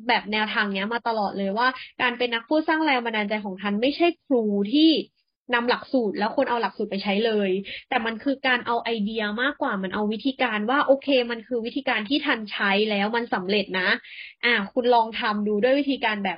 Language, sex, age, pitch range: Thai, female, 20-39, 210-275 Hz